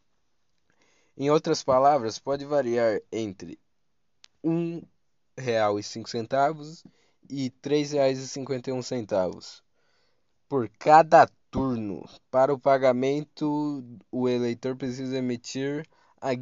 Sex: male